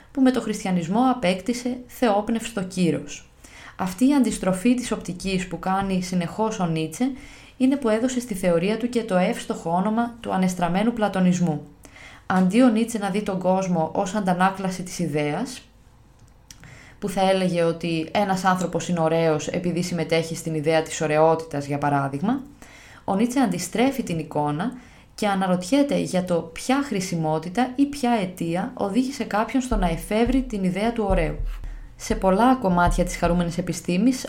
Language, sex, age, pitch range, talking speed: Greek, female, 20-39, 175-225 Hz, 150 wpm